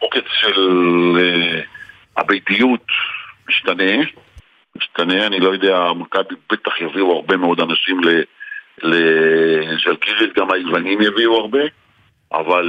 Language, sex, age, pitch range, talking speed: Hebrew, male, 50-69, 90-110 Hz, 100 wpm